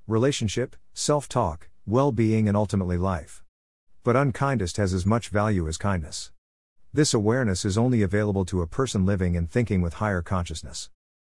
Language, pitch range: English, 90-120 Hz